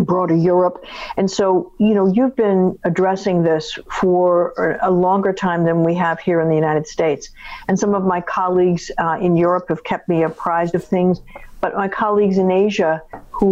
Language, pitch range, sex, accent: English, 175-200 Hz, female, American